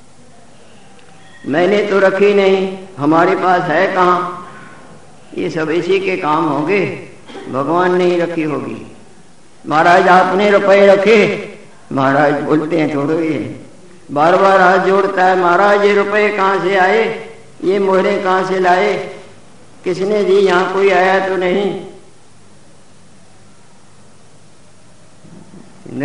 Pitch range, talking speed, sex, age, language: 180-200 Hz, 115 wpm, female, 50-69, Hindi